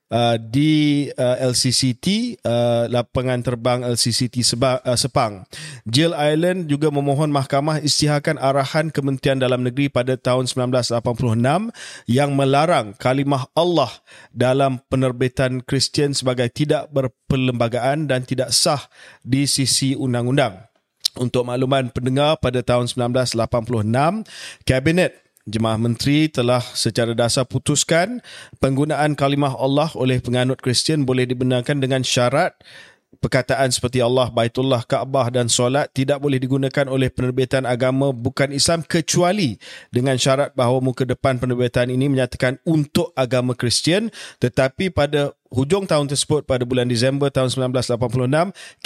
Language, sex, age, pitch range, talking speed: Malay, male, 30-49, 125-145 Hz, 125 wpm